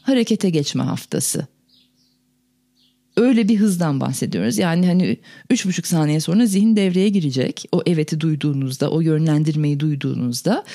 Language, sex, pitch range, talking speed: Turkish, female, 150-235 Hz, 125 wpm